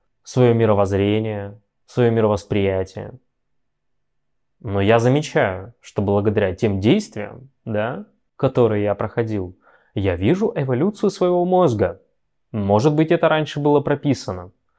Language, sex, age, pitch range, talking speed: Russian, male, 20-39, 105-130 Hz, 105 wpm